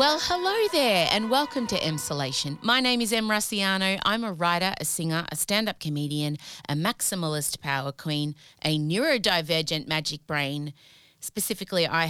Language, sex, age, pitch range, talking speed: English, female, 30-49, 160-225 Hz, 150 wpm